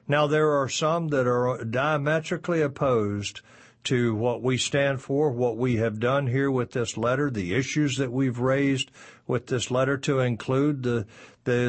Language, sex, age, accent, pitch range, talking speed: English, male, 50-69, American, 115-140 Hz, 170 wpm